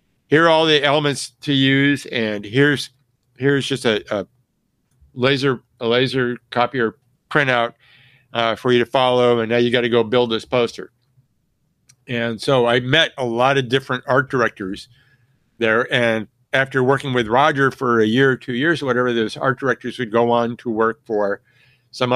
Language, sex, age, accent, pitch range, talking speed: English, male, 50-69, American, 115-135 Hz, 180 wpm